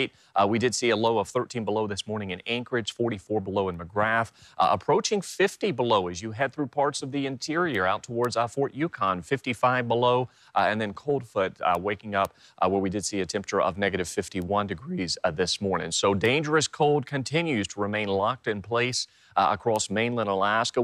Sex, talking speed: male, 200 wpm